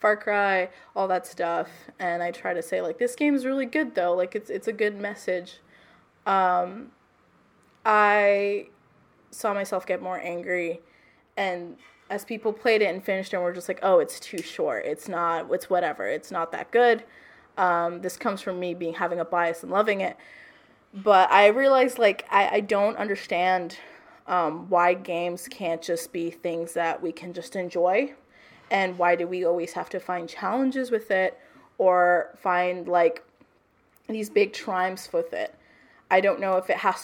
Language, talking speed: English, 180 wpm